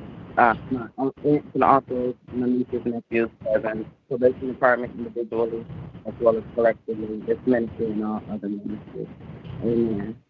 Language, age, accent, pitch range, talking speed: English, 30-49, American, 115-130 Hz, 145 wpm